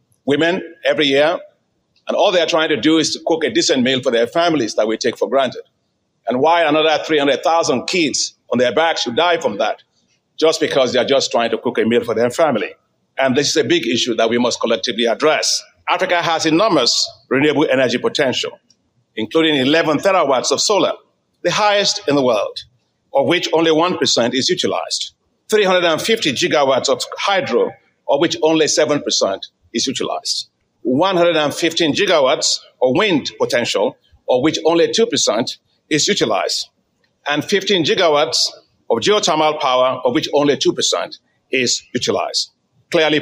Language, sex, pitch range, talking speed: English, male, 150-205 Hz, 160 wpm